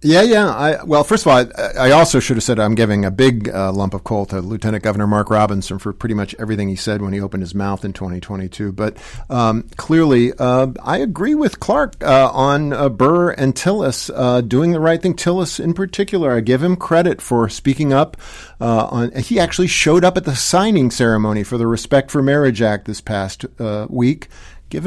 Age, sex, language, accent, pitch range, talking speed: 50-69, male, English, American, 110-140 Hz, 215 wpm